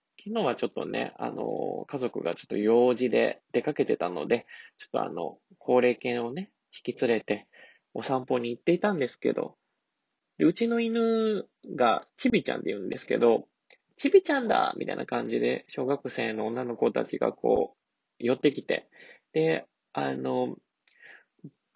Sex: male